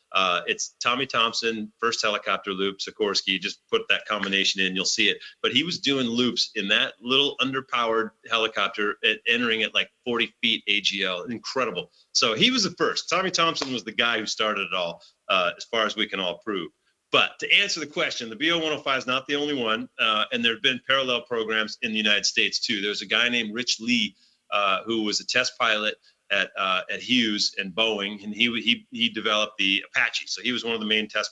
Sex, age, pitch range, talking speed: male, 30-49, 105-135 Hz, 215 wpm